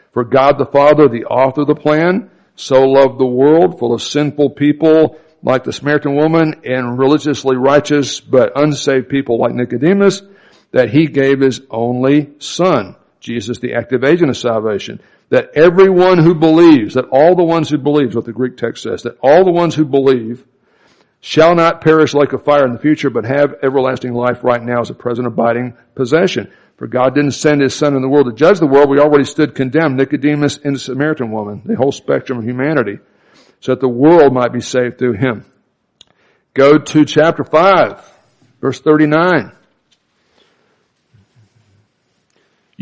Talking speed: 175 wpm